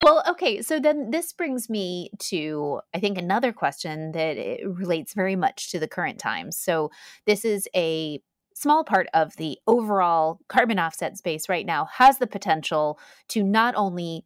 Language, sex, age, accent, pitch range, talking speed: English, female, 30-49, American, 160-210 Hz, 170 wpm